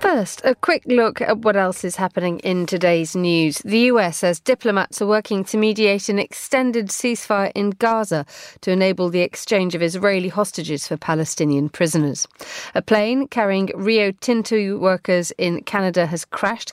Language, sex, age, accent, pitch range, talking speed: English, female, 40-59, British, 165-215 Hz, 160 wpm